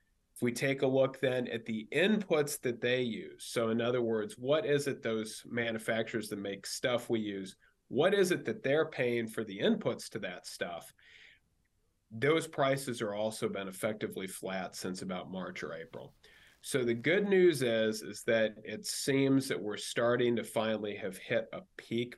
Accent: American